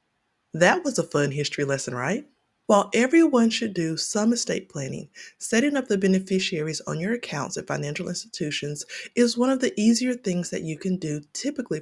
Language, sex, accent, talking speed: English, female, American, 180 wpm